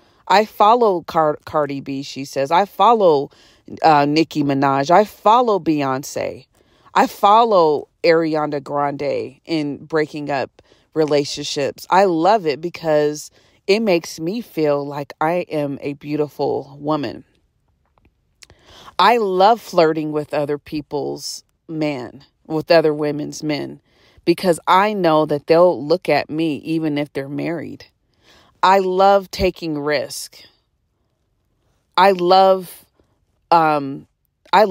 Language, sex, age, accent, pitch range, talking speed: English, female, 40-59, American, 145-175 Hz, 120 wpm